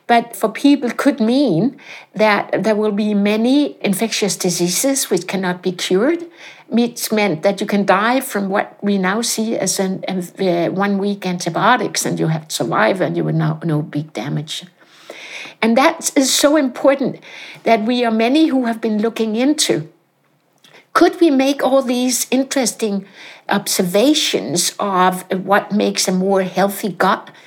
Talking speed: 160 wpm